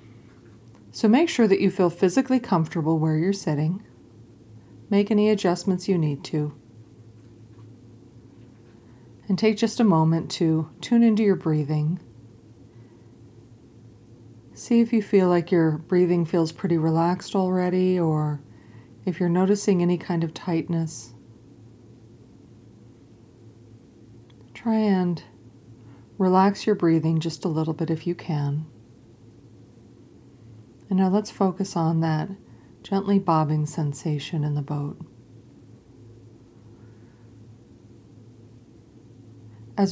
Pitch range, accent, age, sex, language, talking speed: 115-180 Hz, American, 40-59, female, English, 105 wpm